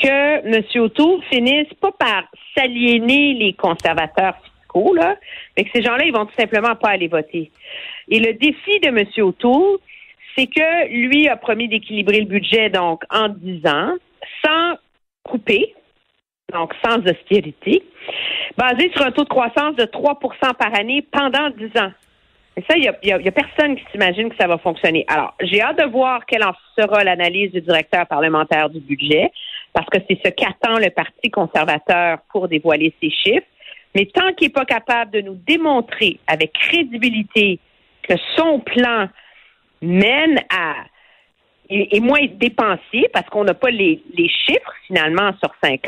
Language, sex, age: French, female, 50-69